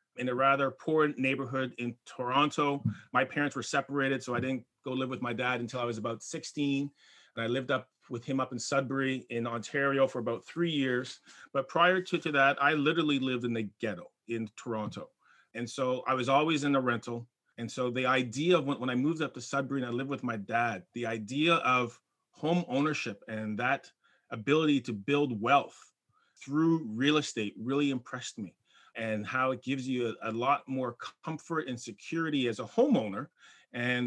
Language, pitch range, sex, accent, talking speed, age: English, 120-150 Hz, male, American, 195 wpm, 30-49